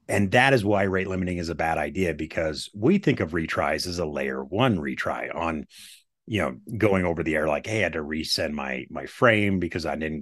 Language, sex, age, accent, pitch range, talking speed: English, male, 30-49, American, 85-130 Hz, 230 wpm